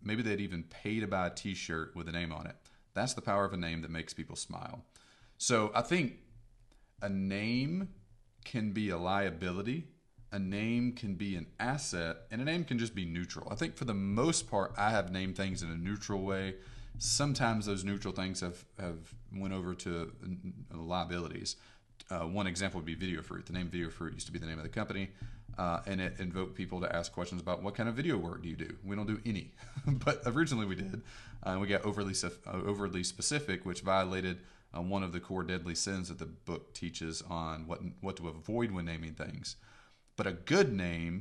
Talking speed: 210 wpm